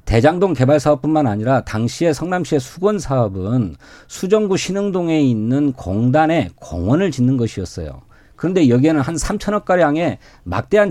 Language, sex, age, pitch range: Korean, male, 40-59, 125-190 Hz